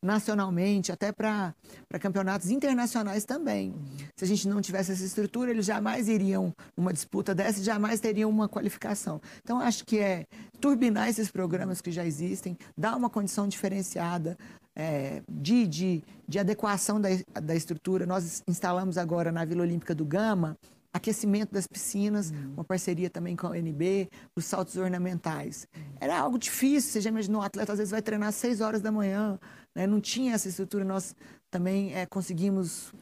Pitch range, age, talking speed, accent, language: 170-215 Hz, 40-59, 165 wpm, Brazilian, Portuguese